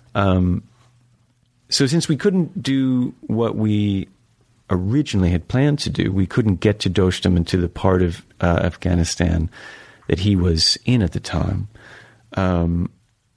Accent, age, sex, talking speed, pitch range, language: American, 40-59, male, 150 wpm, 90-105 Hz, English